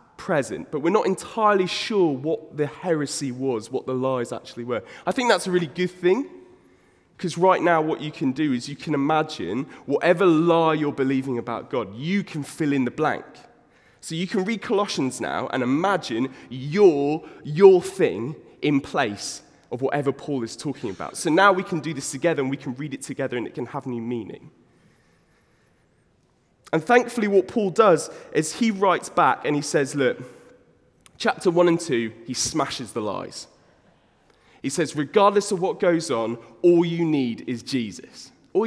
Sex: male